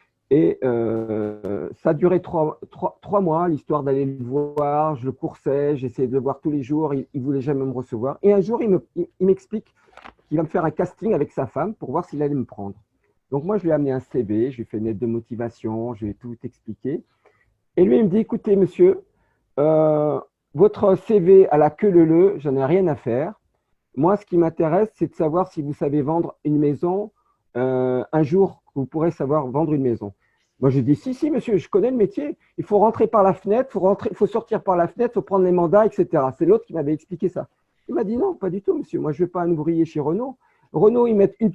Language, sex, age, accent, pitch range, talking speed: French, male, 50-69, French, 140-200 Hz, 245 wpm